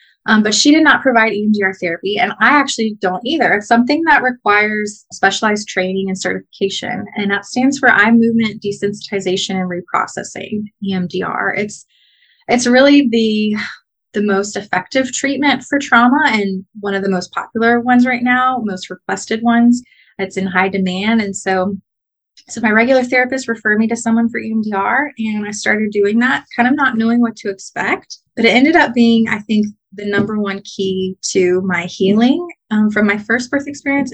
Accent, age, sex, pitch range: American, 20-39, female, 195-235 Hz